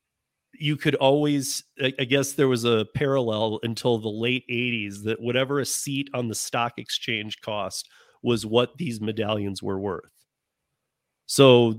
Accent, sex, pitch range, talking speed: American, male, 110-130 Hz, 150 wpm